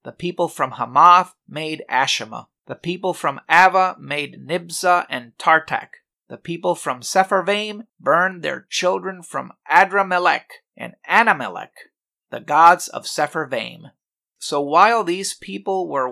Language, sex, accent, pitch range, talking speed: English, male, American, 160-200 Hz, 125 wpm